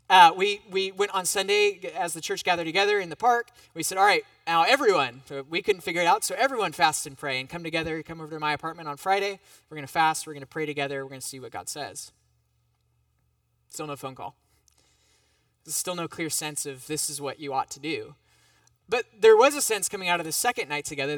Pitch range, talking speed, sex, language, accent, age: 145-200 Hz, 240 wpm, male, English, American, 20-39